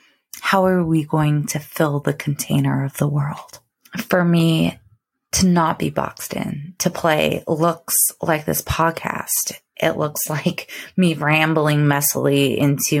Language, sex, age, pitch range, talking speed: English, female, 20-39, 150-180 Hz, 145 wpm